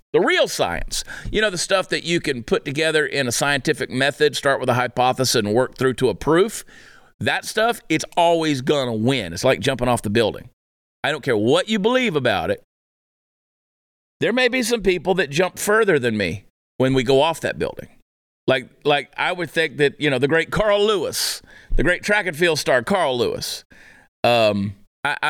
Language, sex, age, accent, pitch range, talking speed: English, male, 40-59, American, 130-185 Hz, 200 wpm